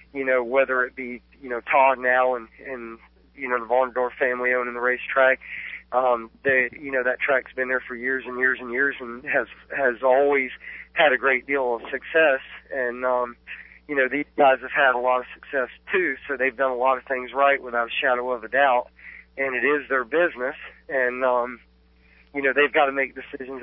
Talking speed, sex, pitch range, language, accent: 215 wpm, male, 125-140 Hz, English, American